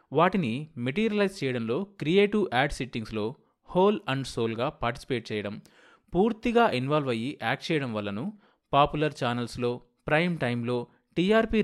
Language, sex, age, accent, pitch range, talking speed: Telugu, male, 30-49, native, 115-160 Hz, 115 wpm